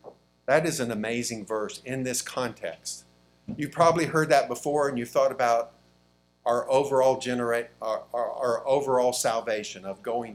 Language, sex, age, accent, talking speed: English, male, 50-69, American, 145 wpm